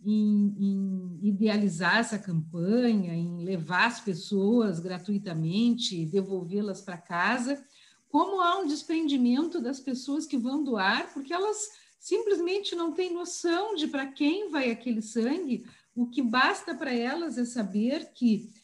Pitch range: 195-245 Hz